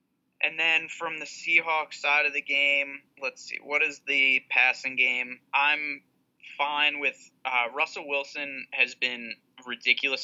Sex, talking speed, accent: male, 145 wpm, American